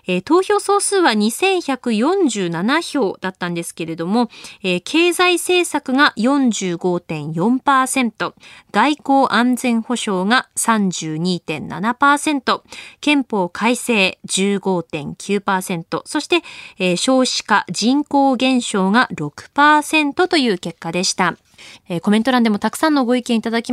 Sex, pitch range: female, 195-290 Hz